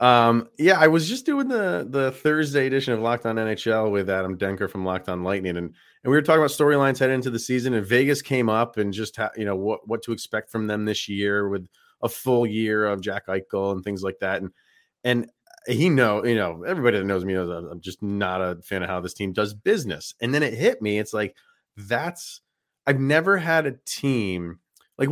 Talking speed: 230 wpm